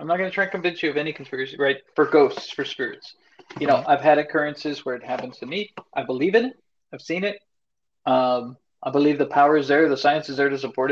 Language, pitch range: English, 130-155 Hz